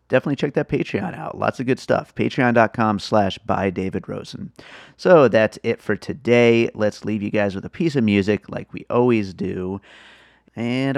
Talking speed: 170 wpm